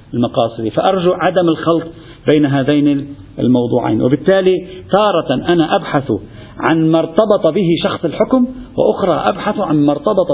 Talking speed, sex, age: 130 wpm, male, 50-69